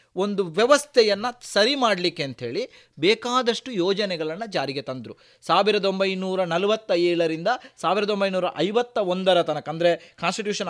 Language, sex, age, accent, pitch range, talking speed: Kannada, male, 30-49, native, 175-240 Hz, 85 wpm